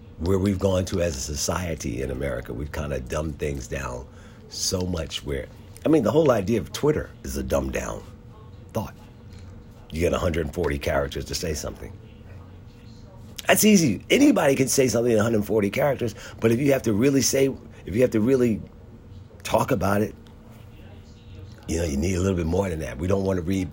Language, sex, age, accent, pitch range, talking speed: English, male, 50-69, American, 80-110 Hz, 185 wpm